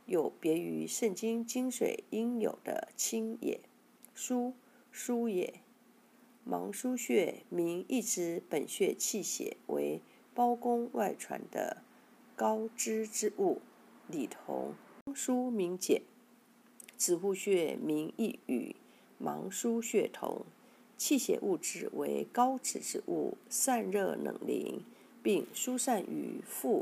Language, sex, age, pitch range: Chinese, female, 50-69, 205-255 Hz